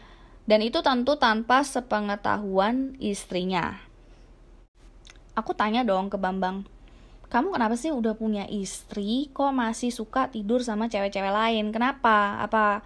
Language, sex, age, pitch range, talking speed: Indonesian, female, 20-39, 205-260 Hz, 120 wpm